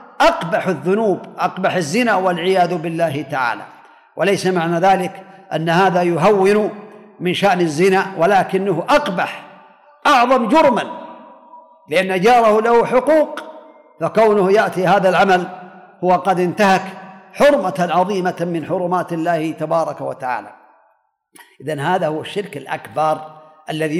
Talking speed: 110 wpm